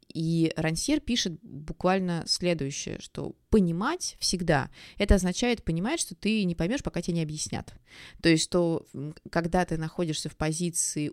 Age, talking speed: 20-39, 145 wpm